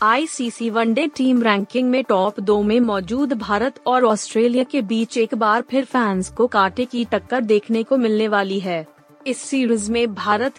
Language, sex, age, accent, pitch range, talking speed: Hindi, female, 30-49, native, 210-255 Hz, 175 wpm